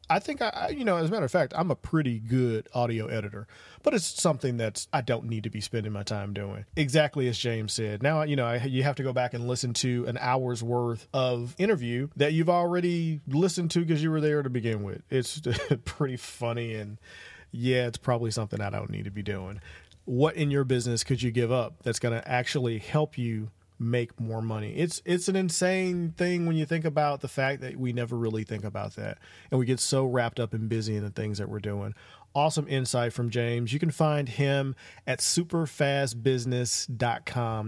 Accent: American